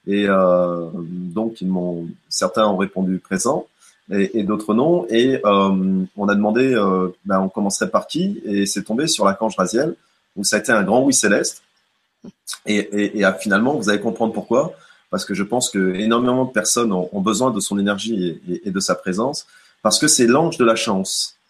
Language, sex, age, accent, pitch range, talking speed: French, male, 30-49, French, 95-120 Hz, 205 wpm